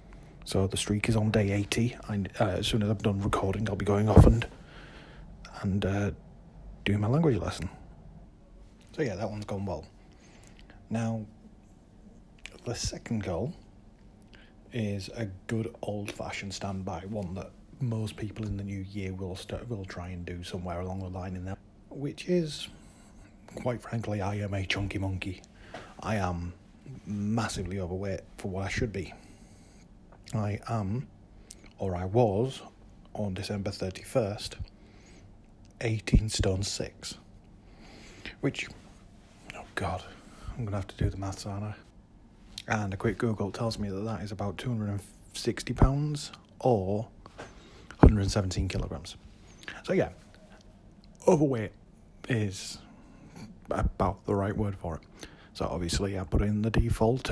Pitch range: 95-110 Hz